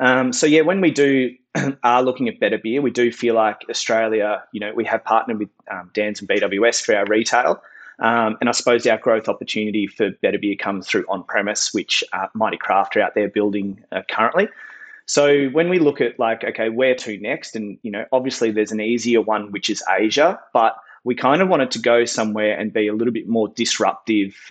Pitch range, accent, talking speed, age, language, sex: 110-130 Hz, Australian, 215 wpm, 20-39, English, male